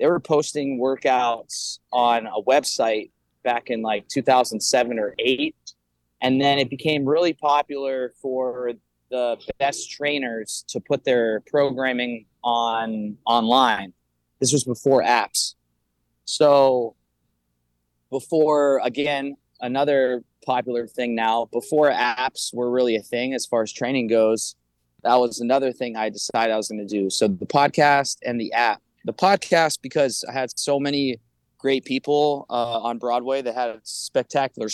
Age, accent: 20-39, American